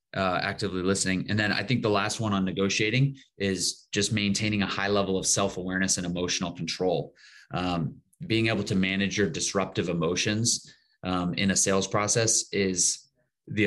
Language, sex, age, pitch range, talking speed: English, male, 30-49, 95-110 Hz, 165 wpm